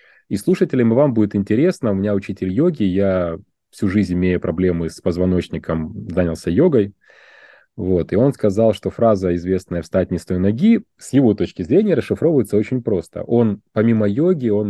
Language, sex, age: Ukrainian, male, 30-49